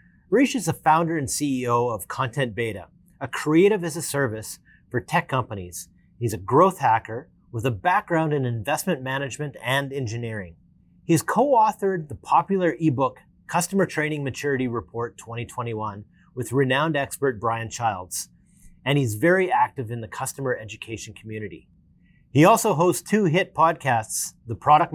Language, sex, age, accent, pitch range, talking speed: English, male, 30-49, American, 120-175 Hz, 145 wpm